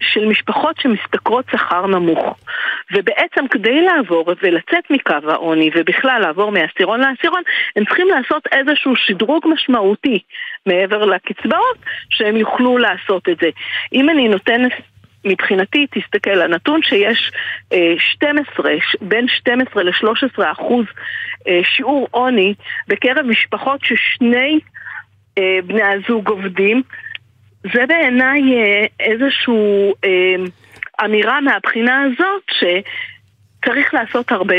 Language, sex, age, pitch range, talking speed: Hebrew, female, 50-69, 185-270 Hz, 100 wpm